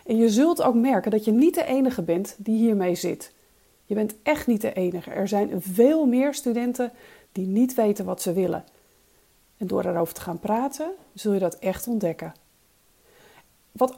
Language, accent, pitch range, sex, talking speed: Dutch, Dutch, 185-265 Hz, female, 185 wpm